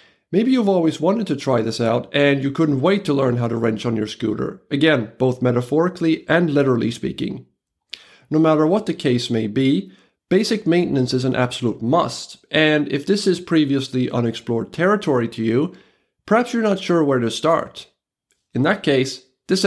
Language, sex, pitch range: English, male, 115-165 Hz